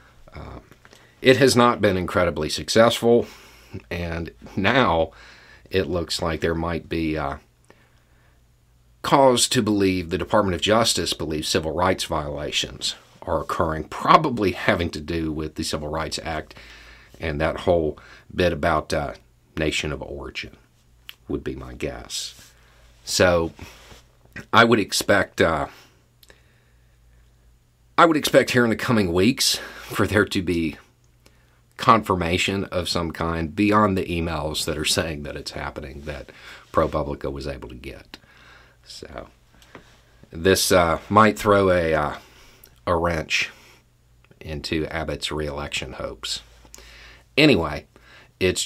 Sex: male